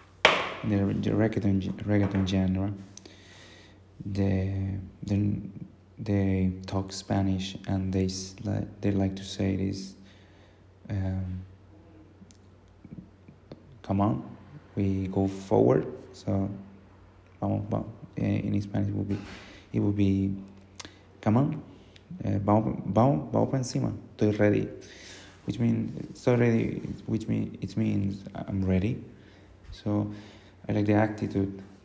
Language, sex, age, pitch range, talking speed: English, male, 30-49, 95-105 Hz, 110 wpm